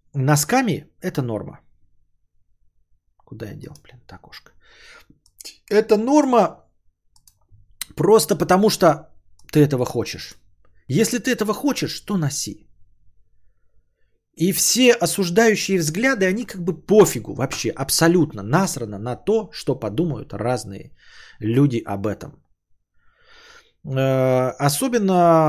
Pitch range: 115-185 Hz